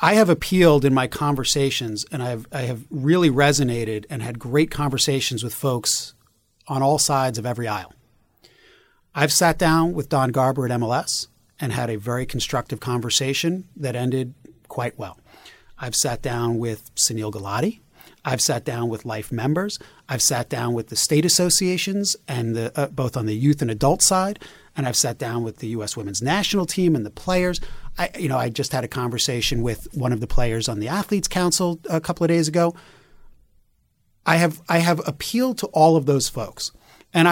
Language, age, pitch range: English, 30-49, 120-165 Hz